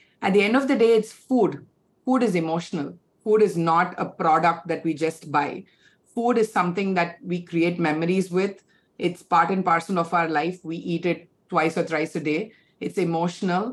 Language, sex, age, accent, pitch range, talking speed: English, female, 30-49, Indian, 175-215 Hz, 195 wpm